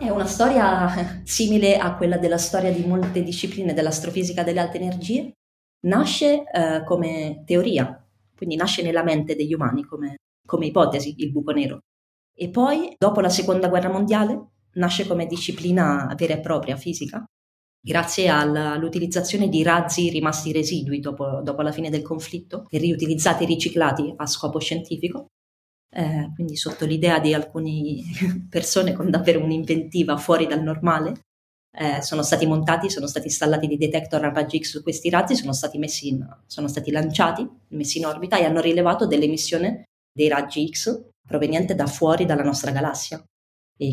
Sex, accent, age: female, native, 20-39